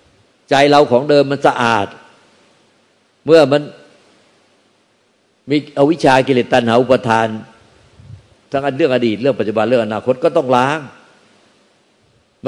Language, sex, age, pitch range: Thai, male, 60-79, 105-130 Hz